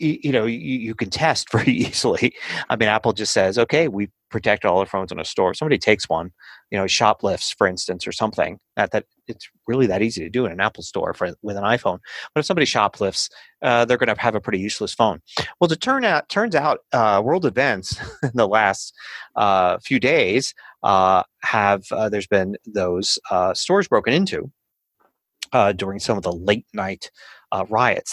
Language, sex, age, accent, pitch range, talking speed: English, male, 30-49, American, 100-140 Hz, 205 wpm